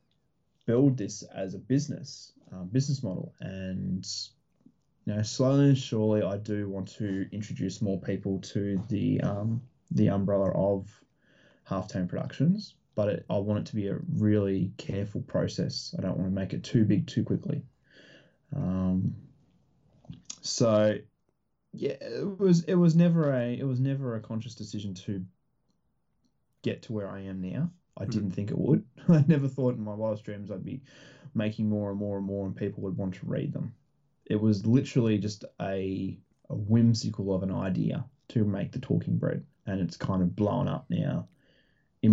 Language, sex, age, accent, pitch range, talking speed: English, male, 20-39, Australian, 95-130 Hz, 175 wpm